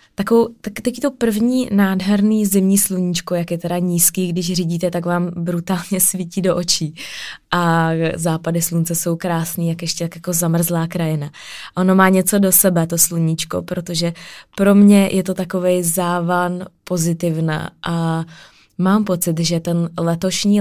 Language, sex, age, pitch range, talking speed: Czech, female, 20-39, 165-185 Hz, 150 wpm